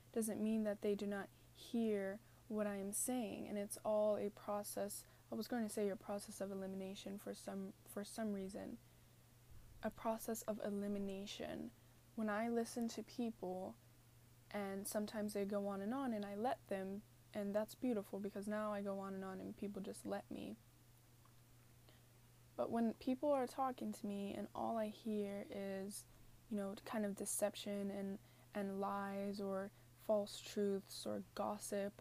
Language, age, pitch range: English, 10-29, 200-230 Hz